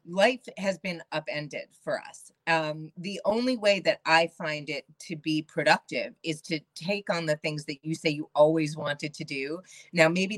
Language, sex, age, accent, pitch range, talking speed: English, female, 30-49, American, 155-195 Hz, 190 wpm